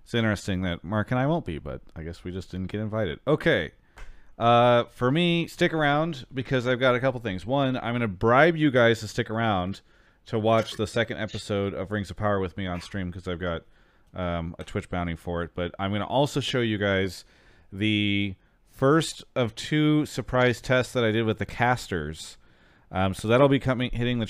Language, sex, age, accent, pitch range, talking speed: English, male, 30-49, American, 90-115 Hz, 215 wpm